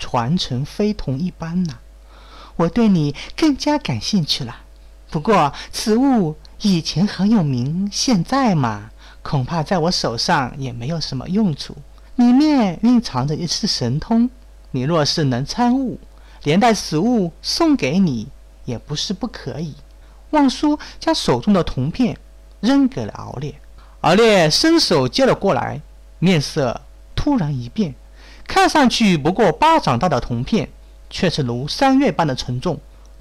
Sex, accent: male, native